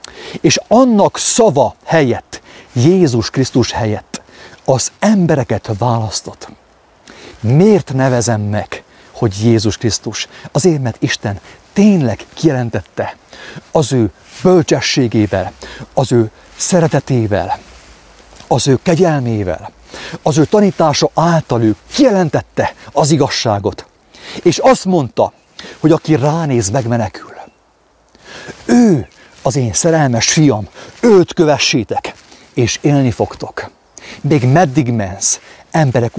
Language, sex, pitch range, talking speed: English, male, 110-160 Hz, 95 wpm